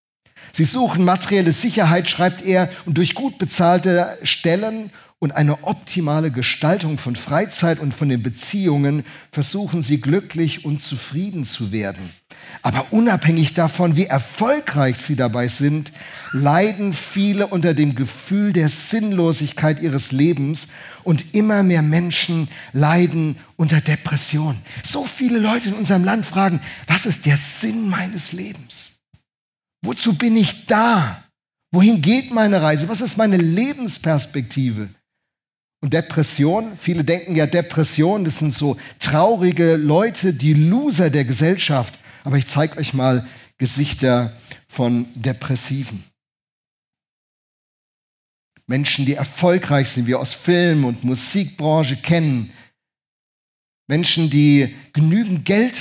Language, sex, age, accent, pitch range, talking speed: German, male, 50-69, German, 140-185 Hz, 125 wpm